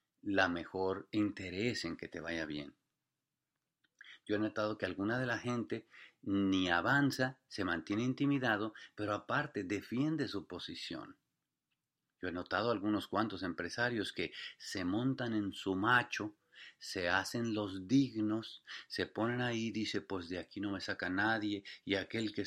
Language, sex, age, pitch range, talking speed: English, male, 40-59, 100-130 Hz, 150 wpm